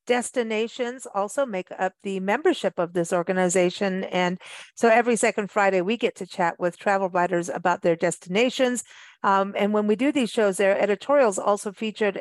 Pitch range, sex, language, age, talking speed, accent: 195-240 Hz, female, English, 50-69, 170 wpm, American